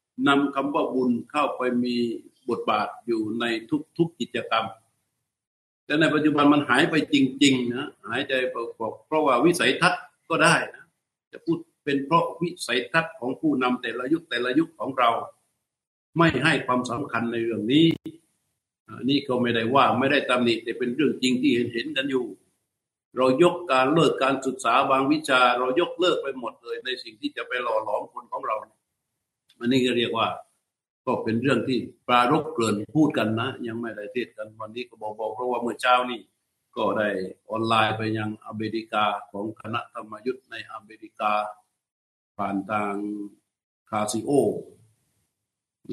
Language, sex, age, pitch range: Thai, male, 60-79, 110-145 Hz